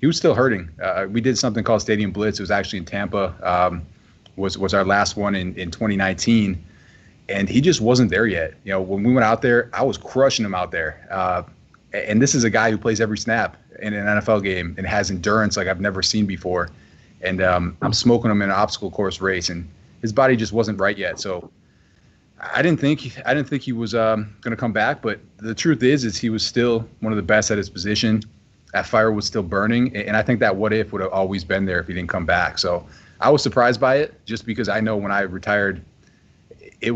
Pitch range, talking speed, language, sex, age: 95-115 Hz, 240 wpm, English, male, 20-39